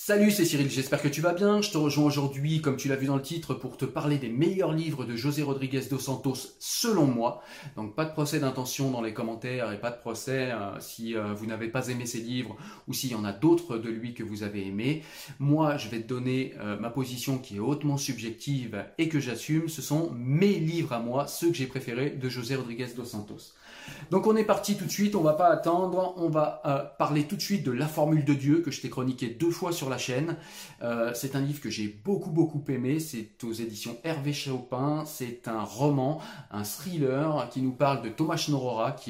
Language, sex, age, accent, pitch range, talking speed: French, male, 30-49, French, 120-155 Hz, 235 wpm